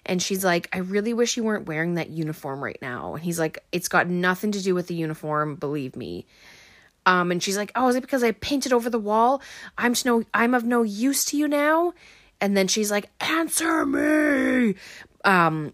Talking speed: 215 wpm